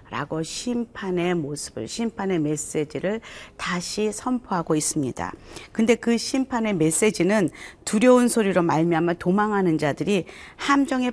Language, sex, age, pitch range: Korean, female, 40-59, 165-220 Hz